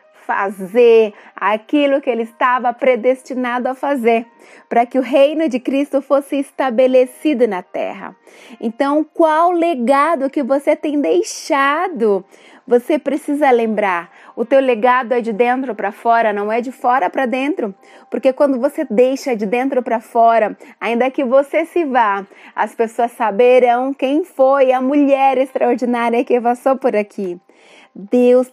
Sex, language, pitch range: female, Portuguese, 230-285 Hz